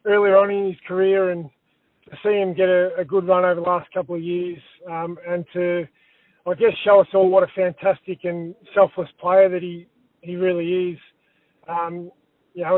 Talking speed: 195 wpm